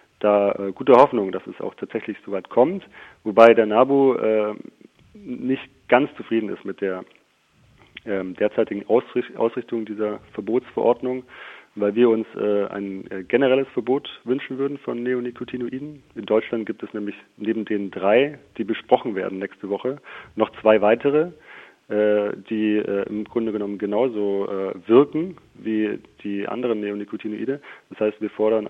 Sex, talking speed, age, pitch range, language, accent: male, 140 wpm, 40-59, 100-120 Hz, German, German